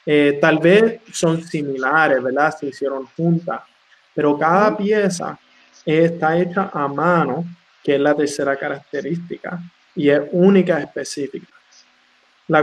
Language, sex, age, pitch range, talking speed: English, male, 20-39, 145-185 Hz, 125 wpm